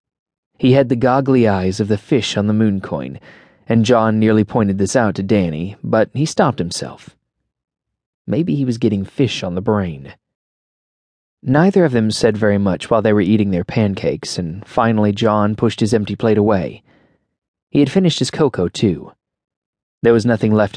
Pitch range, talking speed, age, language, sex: 100-125 Hz, 180 wpm, 20-39, English, male